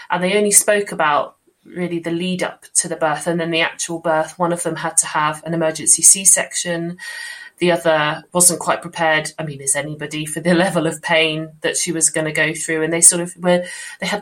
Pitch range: 160-185 Hz